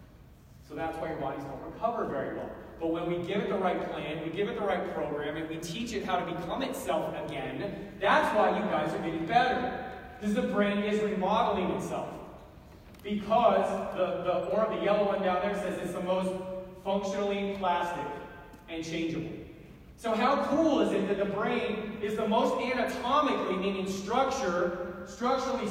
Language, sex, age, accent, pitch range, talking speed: English, male, 30-49, American, 175-205 Hz, 175 wpm